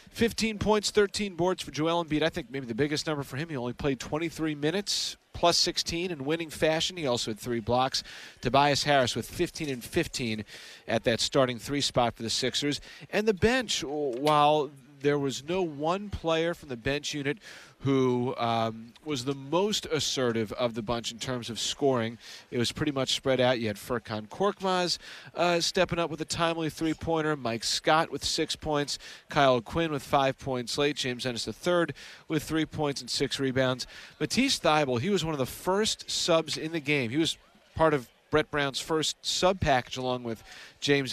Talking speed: 195 wpm